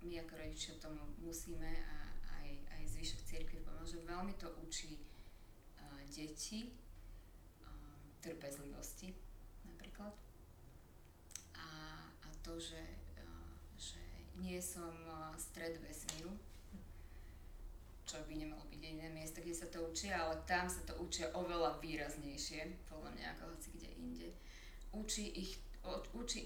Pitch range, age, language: 105-165 Hz, 20-39, Slovak